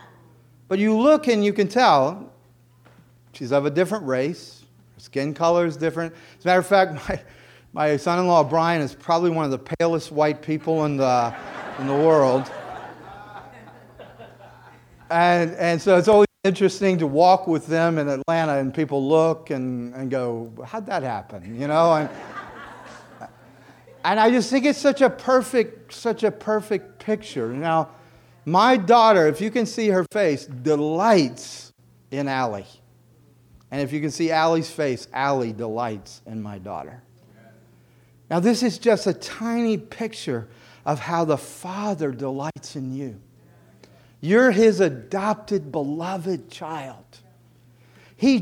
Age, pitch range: 40-59, 130-200 Hz